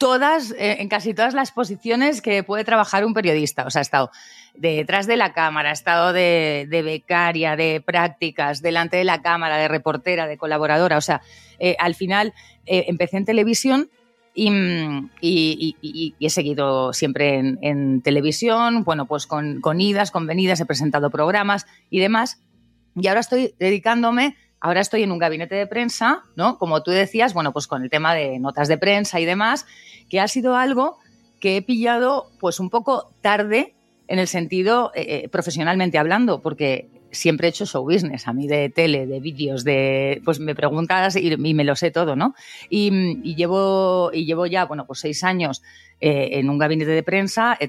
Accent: Spanish